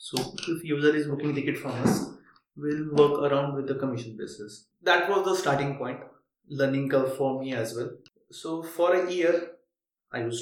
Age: 20-39